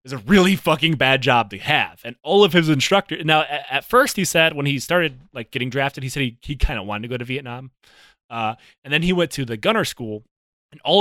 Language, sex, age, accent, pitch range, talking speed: English, male, 20-39, American, 130-210 Hz, 255 wpm